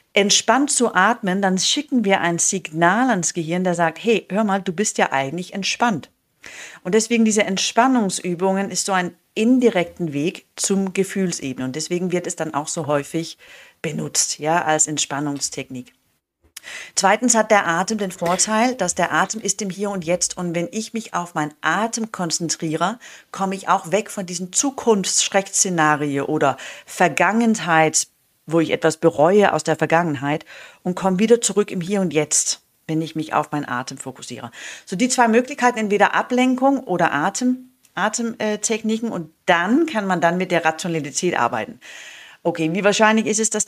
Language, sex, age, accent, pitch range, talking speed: German, female, 40-59, German, 160-210 Hz, 165 wpm